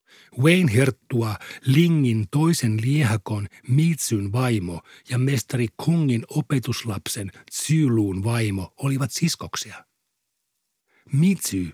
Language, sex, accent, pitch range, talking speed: Finnish, male, native, 110-140 Hz, 80 wpm